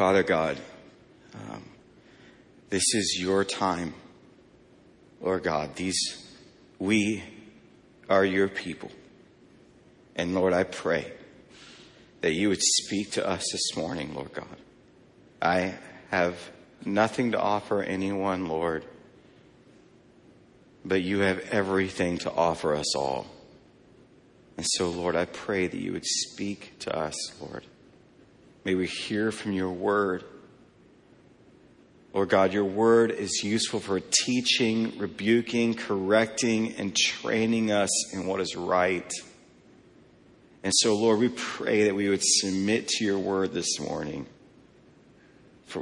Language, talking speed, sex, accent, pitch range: English, 125 wpm, male, American, 95-120 Hz